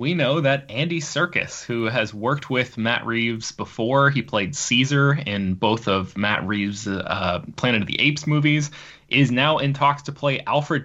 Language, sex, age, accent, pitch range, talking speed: English, male, 20-39, American, 105-140 Hz, 185 wpm